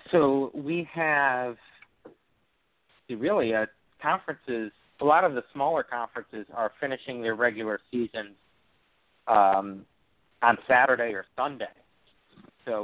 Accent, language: American, English